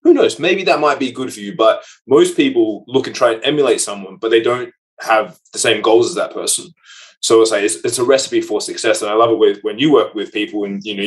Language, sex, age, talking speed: English, male, 20-39, 275 wpm